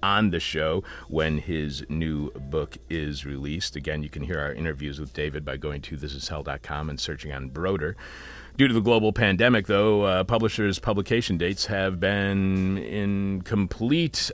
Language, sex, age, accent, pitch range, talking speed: English, male, 40-59, American, 75-105 Hz, 165 wpm